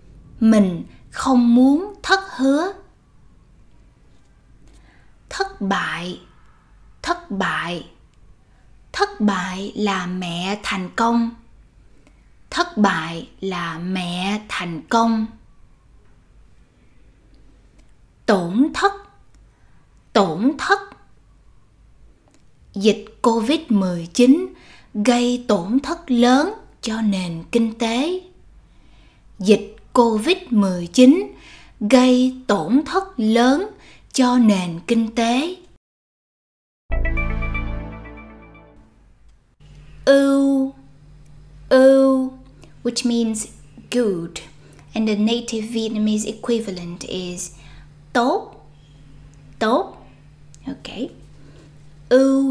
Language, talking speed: Vietnamese, 70 wpm